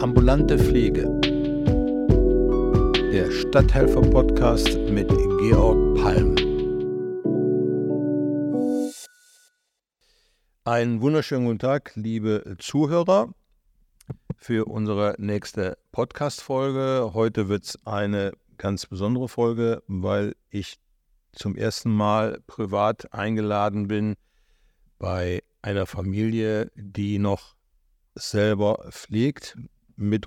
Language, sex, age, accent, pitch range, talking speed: German, male, 60-79, German, 100-120 Hz, 80 wpm